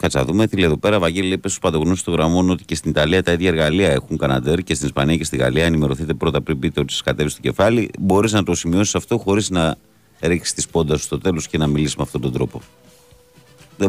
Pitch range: 80-110 Hz